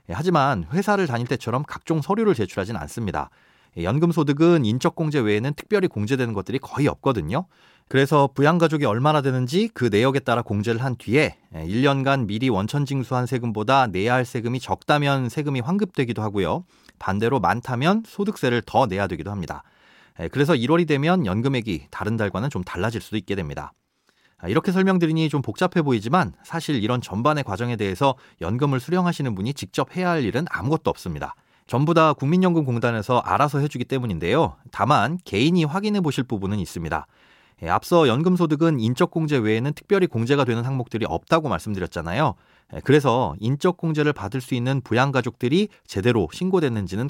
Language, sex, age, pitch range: Korean, male, 30-49, 110-160 Hz